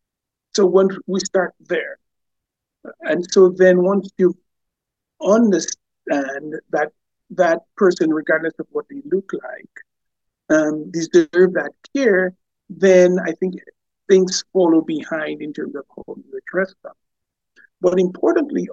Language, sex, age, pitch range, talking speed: English, male, 50-69, 165-205 Hz, 120 wpm